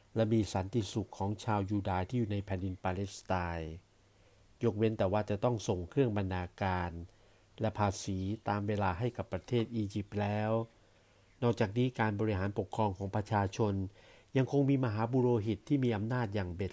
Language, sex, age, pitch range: Thai, male, 60-79, 95-120 Hz